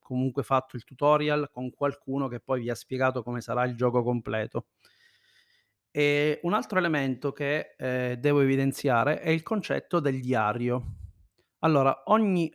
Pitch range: 125-160 Hz